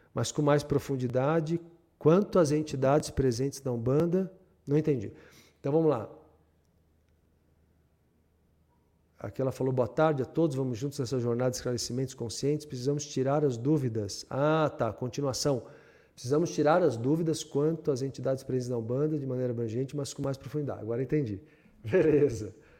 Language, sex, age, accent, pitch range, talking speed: Portuguese, male, 50-69, Brazilian, 125-175 Hz, 145 wpm